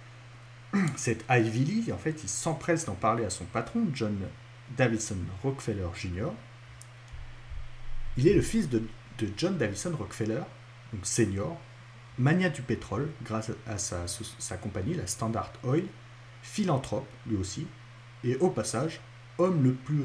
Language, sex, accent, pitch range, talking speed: French, male, French, 110-125 Hz, 140 wpm